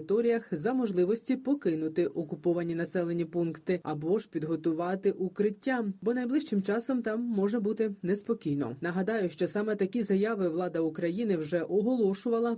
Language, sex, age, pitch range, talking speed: Ukrainian, female, 20-39, 165-215 Hz, 125 wpm